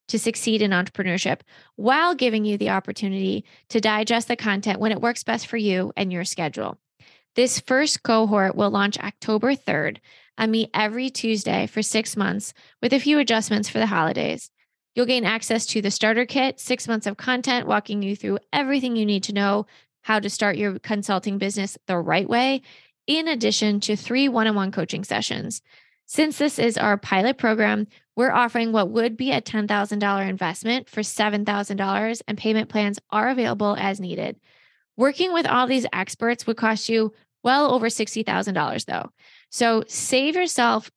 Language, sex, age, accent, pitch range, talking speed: English, female, 20-39, American, 205-240 Hz, 170 wpm